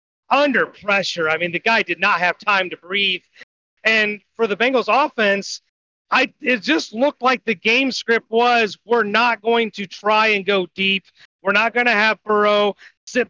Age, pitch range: 30-49, 195-230 Hz